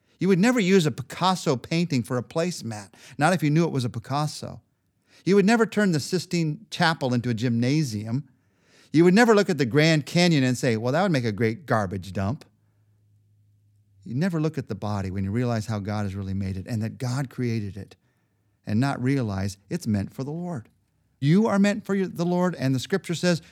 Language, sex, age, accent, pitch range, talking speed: English, male, 50-69, American, 105-150 Hz, 215 wpm